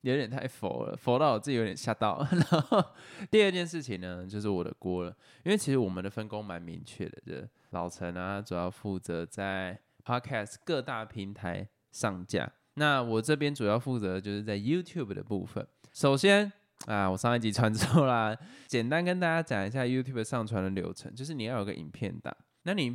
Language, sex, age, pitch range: Chinese, male, 10-29, 100-135 Hz